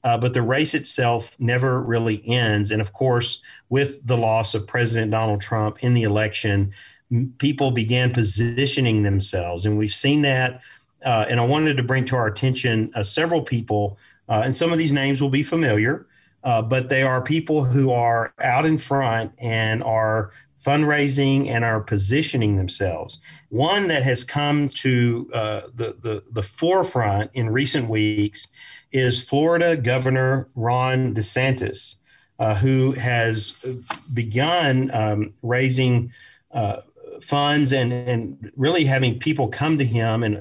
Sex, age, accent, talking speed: male, 40-59, American, 155 wpm